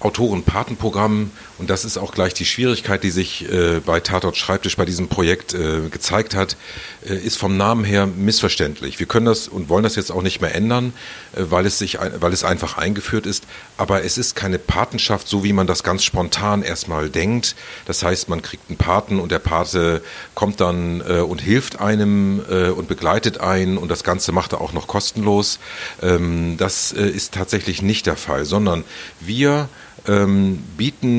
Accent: German